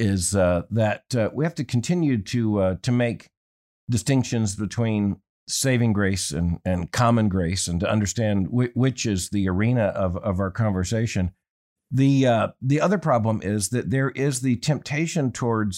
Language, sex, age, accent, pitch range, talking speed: English, male, 50-69, American, 105-135 Hz, 165 wpm